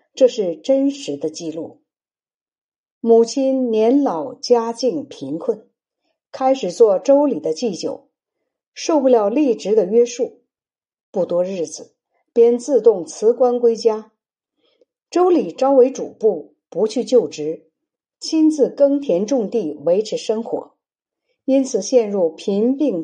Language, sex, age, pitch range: Chinese, female, 50-69, 225-310 Hz